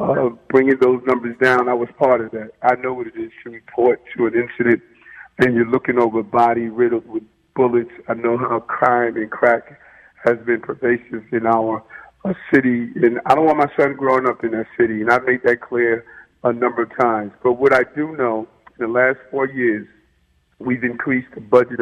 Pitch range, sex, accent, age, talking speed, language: 115-130 Hz, male, American, 50-69, 210 wpm, English